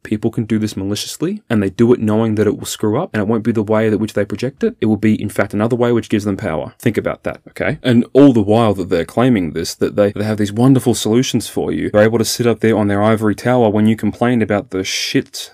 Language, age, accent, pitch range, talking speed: English, 20-39, Australian, 100-115 Hz, 285 wpm